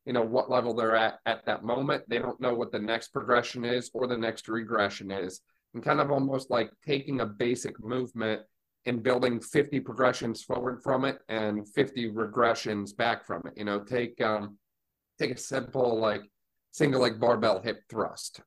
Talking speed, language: 185 wpm, English